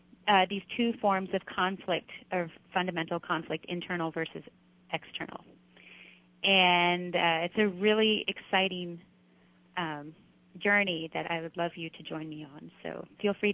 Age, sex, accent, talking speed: 30-49, female, American, 140 wpm